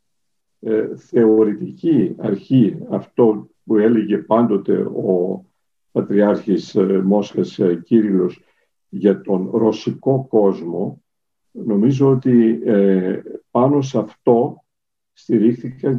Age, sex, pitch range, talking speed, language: 50-69, male, 100-135 Hz, 75 wpm, Greek